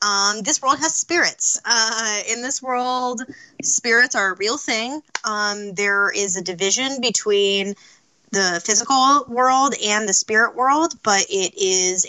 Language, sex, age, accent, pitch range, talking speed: English, female, 10-29, American, 190-250 Hz, 150 wpm